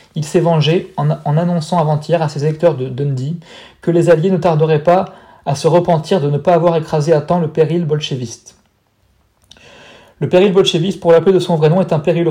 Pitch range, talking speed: 150-175 Hz, 205 wpm